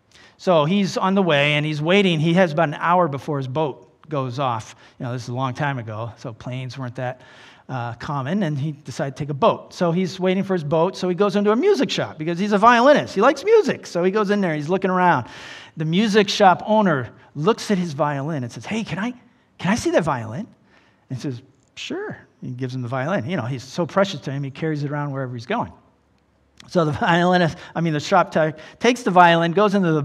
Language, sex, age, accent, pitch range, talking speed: English, male, 40-59, American, 140-200 Hz, 240 wpm